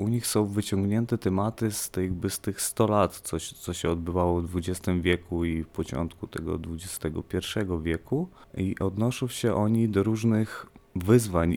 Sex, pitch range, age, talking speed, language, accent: male, 80-95 Hz, 30-49, 165 wpm, Polish, native